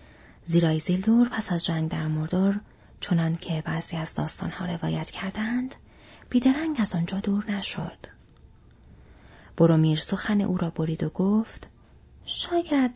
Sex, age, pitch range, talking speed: female, 30-49, 160-215 Hz, 130 wpm